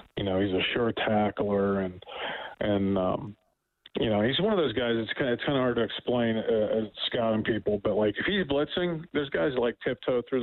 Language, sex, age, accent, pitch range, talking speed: English, male, 40-59, American, 105-130 Hz, 220 wpm